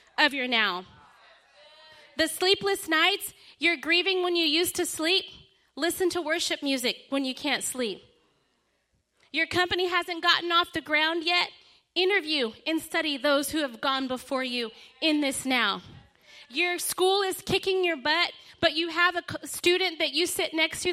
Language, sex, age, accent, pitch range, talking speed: English, female, 30-49, American, 275-345 Hz, 165 wpm